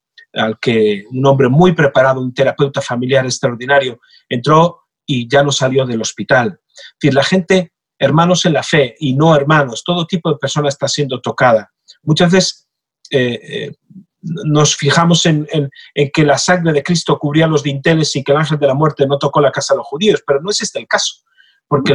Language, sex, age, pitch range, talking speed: Spanish, male, 40-59, 140-180 Hz, 200 wpm